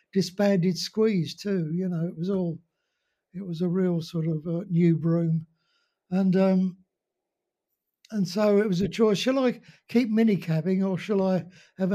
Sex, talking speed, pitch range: male, 165 wpm, 175-205 Hz